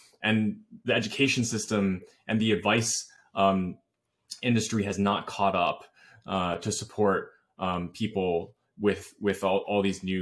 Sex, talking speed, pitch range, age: male, 140 wpm, 95-110 Hz, 20-39